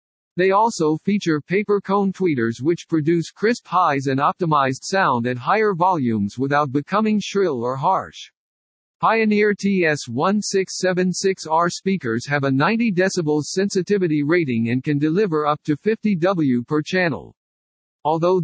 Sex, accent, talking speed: male, American, 125 wpm